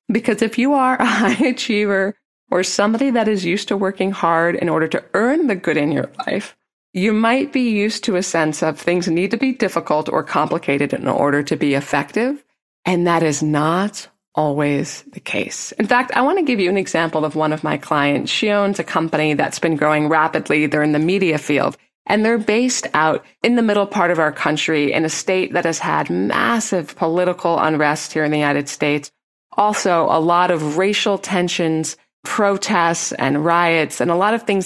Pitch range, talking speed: 155-210 Hz, 205 wpm